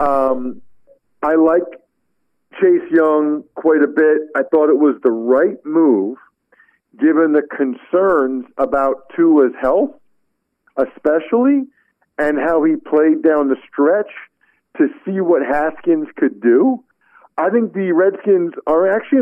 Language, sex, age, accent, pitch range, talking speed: English, male, 50-69, American, 150-205 Hz, 130 wpm